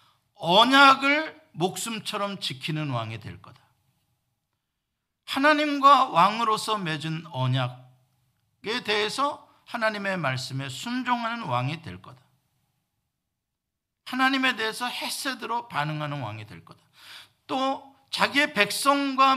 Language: Korean